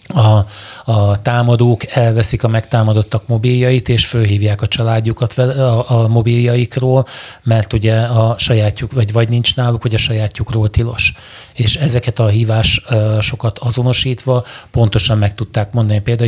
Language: Hungarian